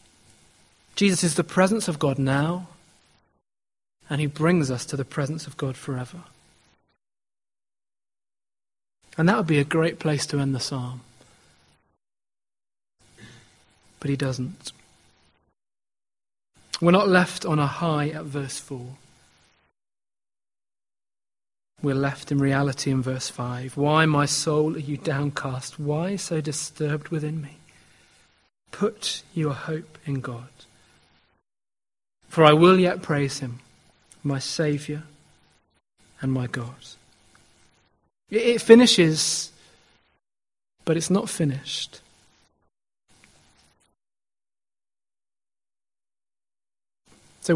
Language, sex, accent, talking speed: English, male, British, 100 wpm